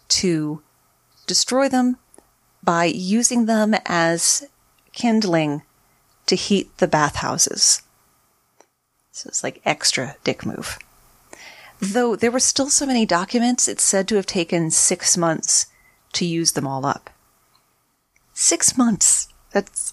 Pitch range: 165-230 Hz